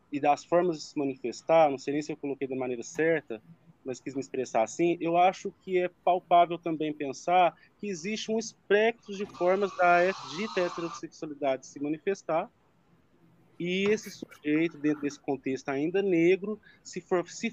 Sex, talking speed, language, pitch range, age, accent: male, 170 wpm, Portuguese, 135-170 Hz, 20-39, Brazilian